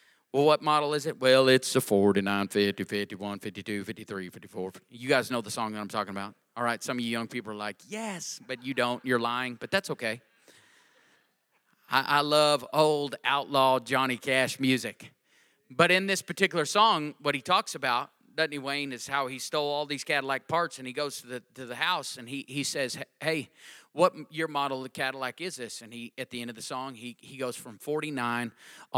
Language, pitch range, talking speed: English, 120-150 Hz, 215 wpm